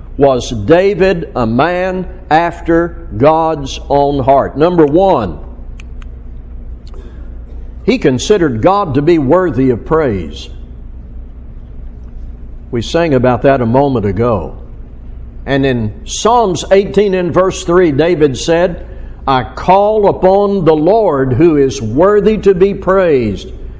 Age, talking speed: 60-79, 115 wpm